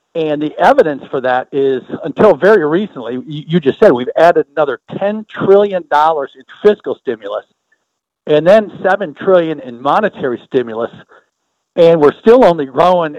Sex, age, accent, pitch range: male, 60-79, American, 145-210 Hz